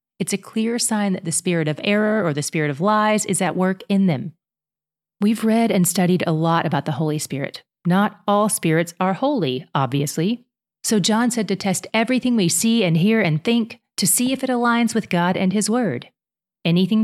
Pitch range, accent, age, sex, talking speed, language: 170-215 Hz, American, 30-49, female, 205 wpm, English